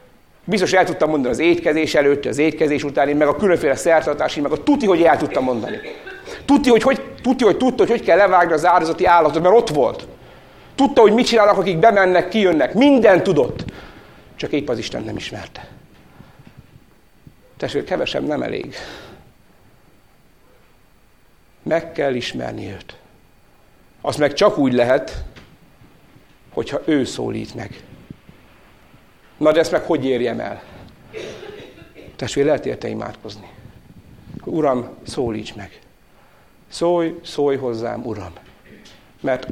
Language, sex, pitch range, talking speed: Hungarian, male, 140-190 Hz, 135 wpm